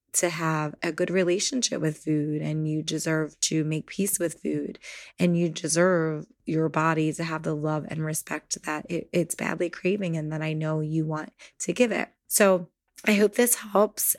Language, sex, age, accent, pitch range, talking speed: English, female, 20-39, American, 160-180 Hz, 185 wpm